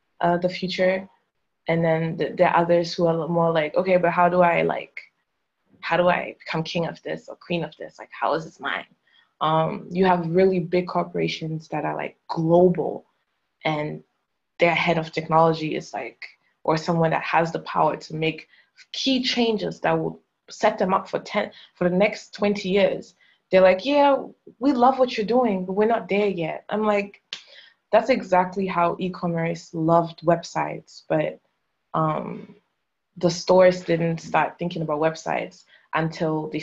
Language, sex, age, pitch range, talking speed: English, female, 20-39, 160-185 Hz, 170 wpm